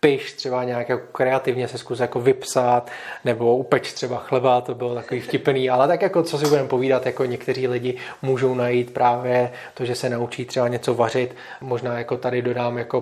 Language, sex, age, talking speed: Czech, male, 20-39, 195 wpm